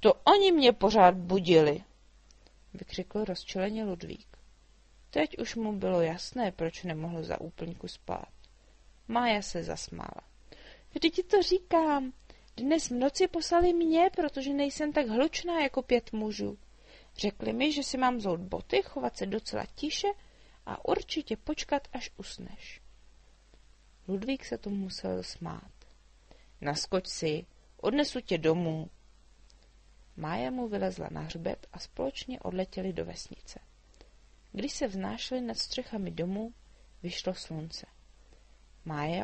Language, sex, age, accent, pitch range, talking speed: Czech, female, 30-49, native, 175-255 Hz, 130 wpm